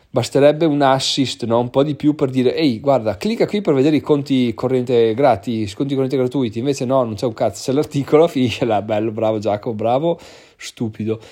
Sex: male